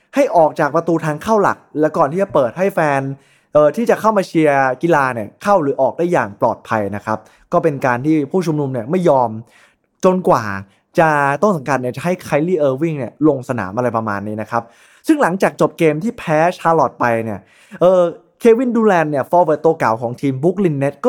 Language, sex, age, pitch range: Thai, male, 20-39, 125-185 Hz